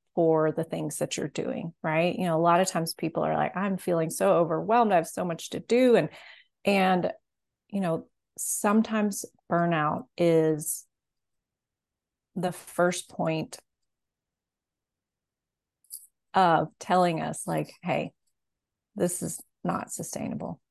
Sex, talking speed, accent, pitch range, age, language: female, 130 wpm, American, 160-185 Hz, 30-49, English